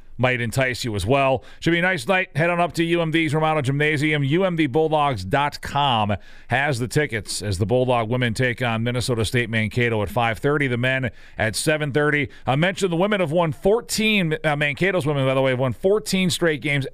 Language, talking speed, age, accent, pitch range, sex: English, 190 wpm, 40-59, American, 125-160 Hz, male